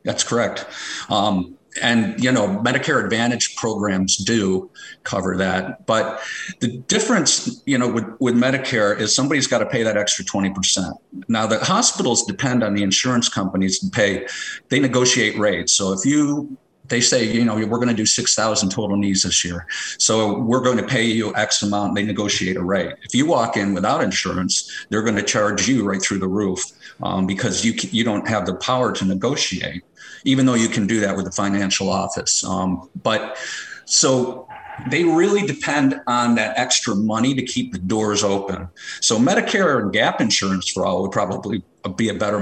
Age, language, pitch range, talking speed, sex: 50-69, English, 100-125 Hz, 190 wpm, male